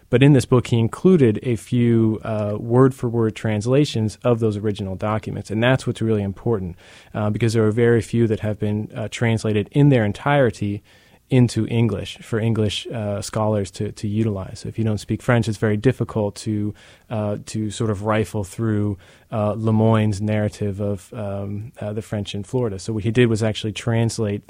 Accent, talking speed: American, 190 wpm